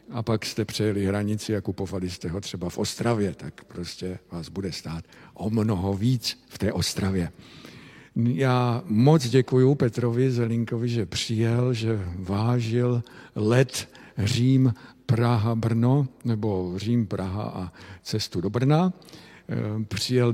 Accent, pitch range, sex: native, 100-120 Hz, male